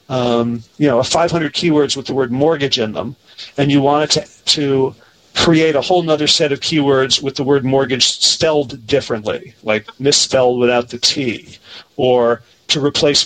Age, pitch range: 40-59, 125-155 Hz